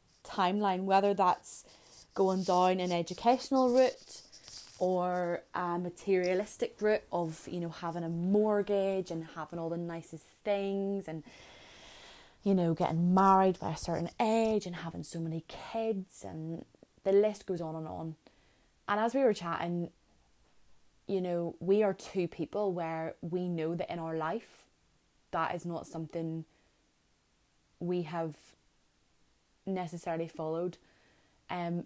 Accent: British